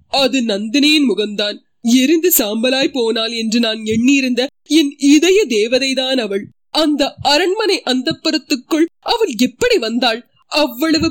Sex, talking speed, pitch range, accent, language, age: female, 95 wpm, 245-315 Hz, native, Tamil, 20-39